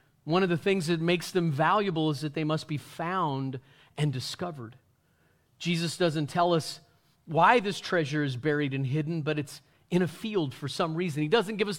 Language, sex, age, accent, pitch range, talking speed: English, male, 40-59, American, 140-175 Hz, 200 wpm